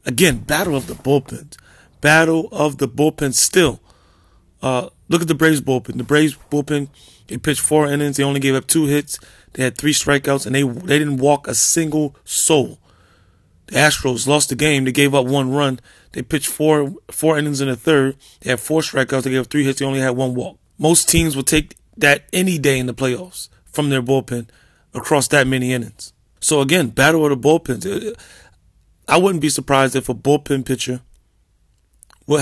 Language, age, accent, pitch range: English, 30-49, American, 125-145 Hz